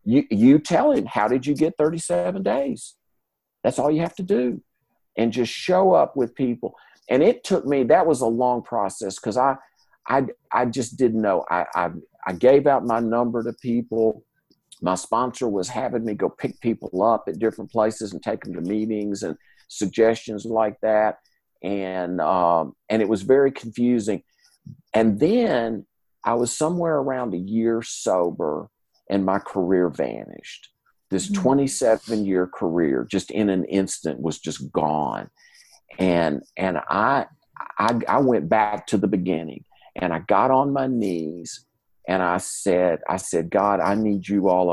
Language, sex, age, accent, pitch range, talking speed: English, male, 50-69, American, 95-130 Hz, 170 wpm